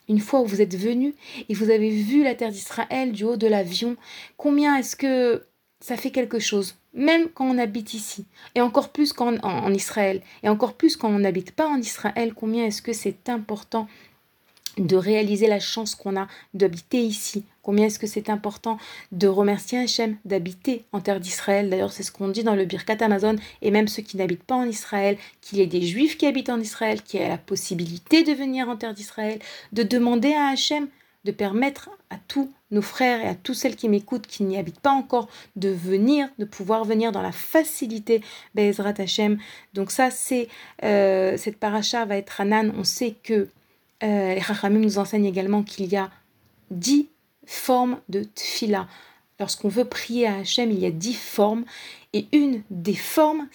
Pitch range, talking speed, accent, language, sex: 200-245 Hz, 195 wpm, French, French, female